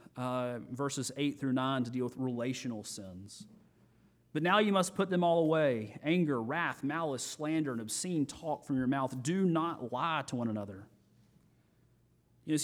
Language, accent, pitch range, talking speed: English, American, 130-170 Hz, 165 wpm